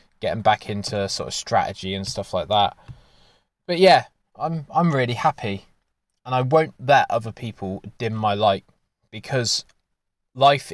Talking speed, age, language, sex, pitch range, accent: 150 wpm, 20-39, English, male, 95-125 Hz, British